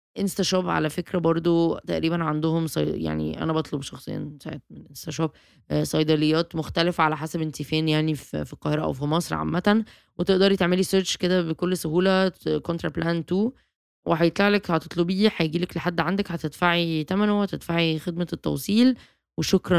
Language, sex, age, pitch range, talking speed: Arabic, female, 20-39, 155-190 Hz, 150 wpm